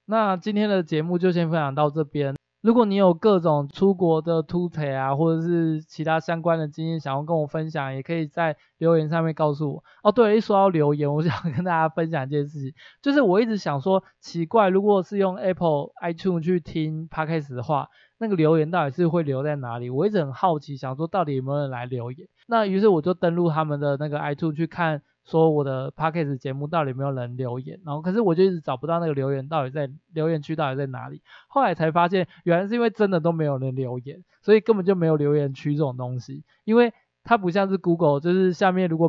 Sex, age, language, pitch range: male, 20-39, Chinese, 145-175 Hz